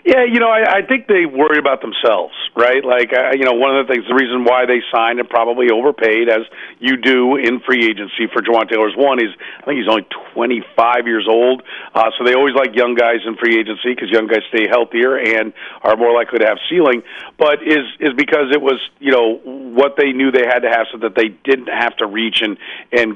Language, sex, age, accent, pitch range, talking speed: English, male, 40-59, American, 115-135 Hz, 235 wpm